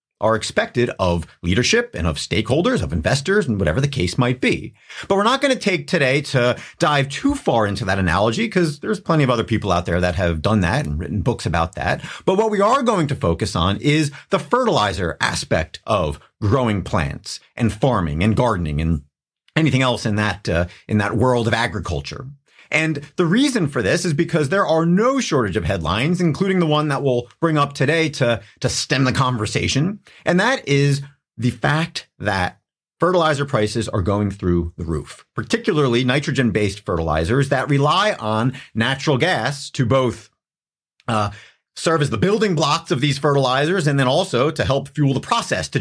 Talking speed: 190 wpm